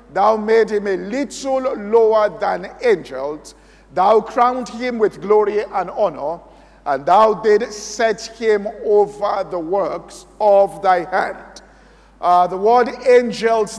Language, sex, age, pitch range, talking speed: English, male, 50-69, 195-220 Hz, 130 wpm